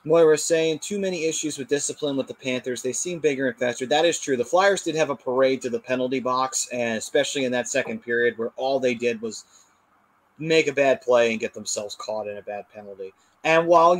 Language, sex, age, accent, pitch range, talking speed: English, male, 30-49, American, 120-160 Hz, 225 wpm